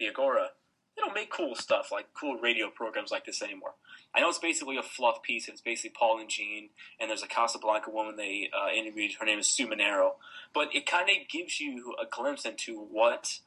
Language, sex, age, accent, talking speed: English, male, 20-39, American, 220 wpm